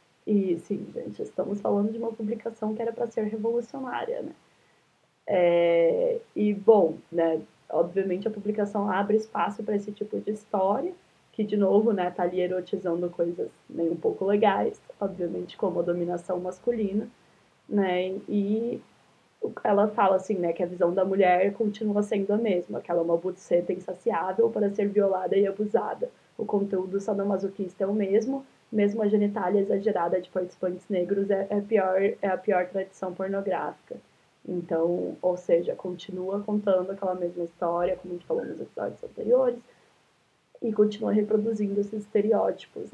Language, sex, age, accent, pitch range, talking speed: Portuguese, female, 20-39, Brazilian, 180-215 Hz, 155 wpm